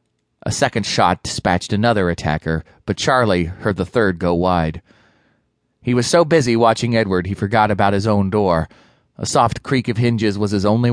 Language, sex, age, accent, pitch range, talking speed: English, male, 30-49, American, 90-115 Hz, 180 wpm